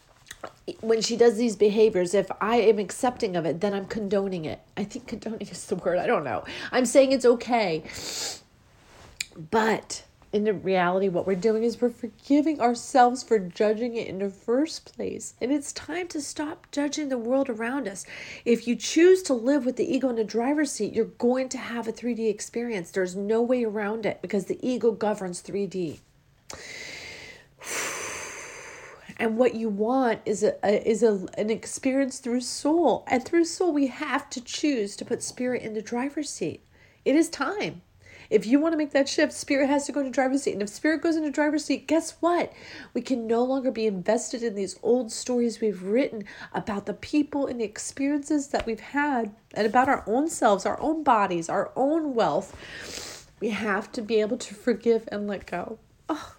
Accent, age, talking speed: American, 40-59, 190 wpm